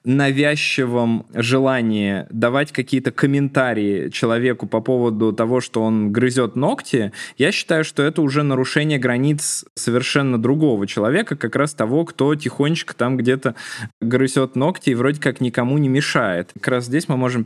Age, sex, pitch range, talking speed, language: 20-39, male, 115-140 Hz, 150 wpm, Russian